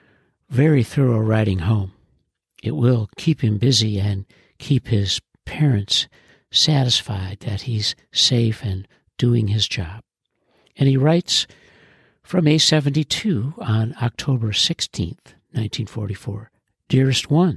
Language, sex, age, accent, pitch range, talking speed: English, male, 60-79, American, 110-155 Hz, 100 wpm